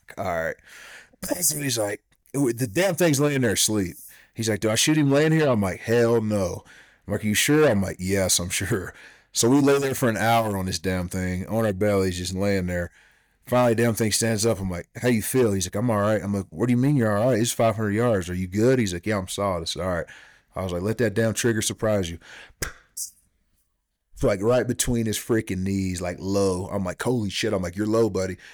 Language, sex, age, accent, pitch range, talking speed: English, male, 30-49, American, 90-115 Hz, 250 wpm